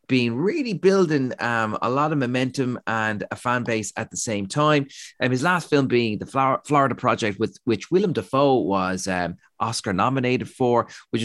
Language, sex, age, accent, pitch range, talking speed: English, male, 30-49, Irish, 95-120 Hz, 185 wpm